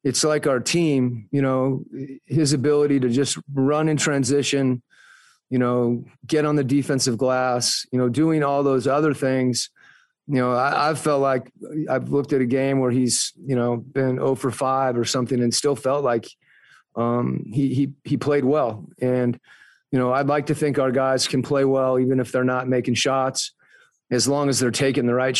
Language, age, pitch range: English, 30-49, 125-140 Hz